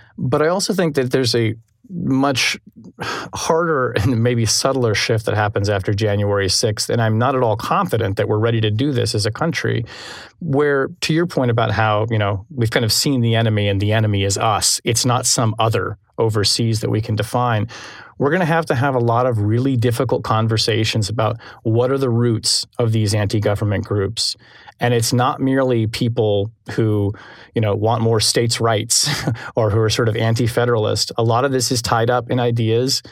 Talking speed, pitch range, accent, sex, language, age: 195 wpm, 110-130 Hz, American, male, English, 30-49